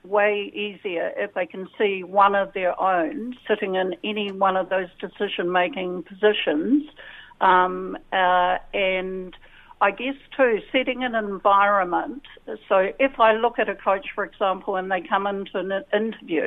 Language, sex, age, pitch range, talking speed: English, female, 60-79, 190-215 Hz, 155 wpm